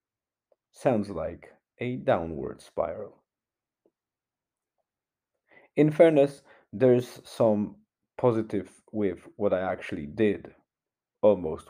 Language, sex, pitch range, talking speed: English, male, 100-125 Hz, 80 wpm